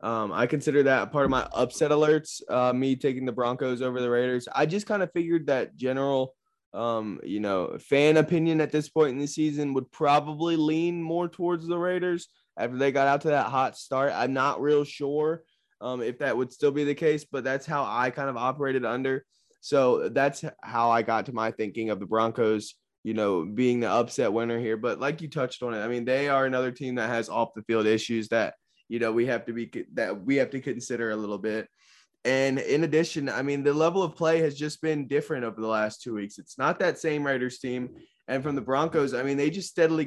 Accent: American